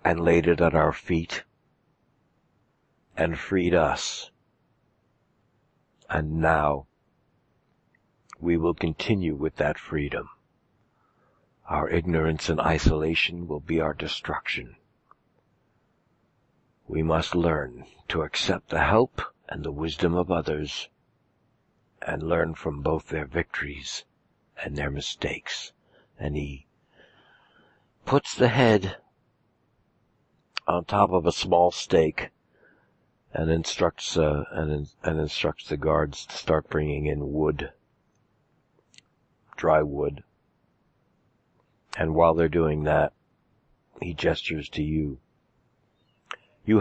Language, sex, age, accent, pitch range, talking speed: English, male, 60-79, American, 75-85 Hz, 105 wpm